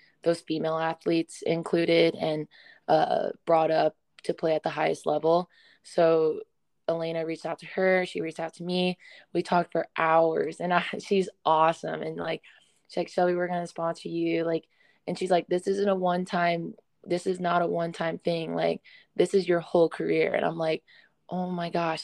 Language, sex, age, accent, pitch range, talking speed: English, female, 20-39, American, 160-185 Hz, 185 wpm